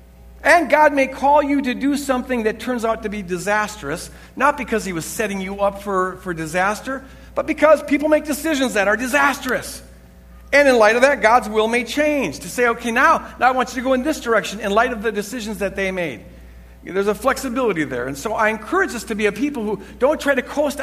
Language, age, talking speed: English, 50-69, 230 wpm